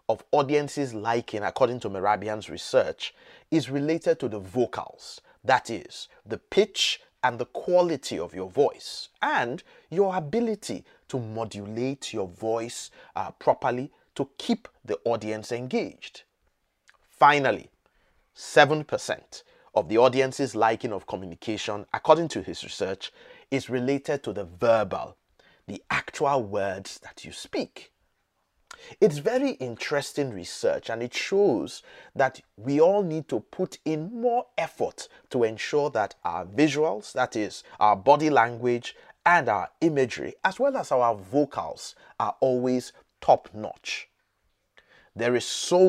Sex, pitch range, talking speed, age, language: male, 115-185 Hz, 130 wpm, 30-49, English